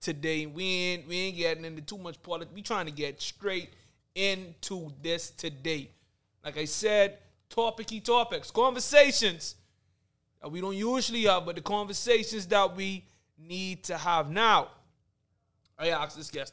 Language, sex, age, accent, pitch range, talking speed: English, male, 20-39, American, 135-175 Hz, 155 wpm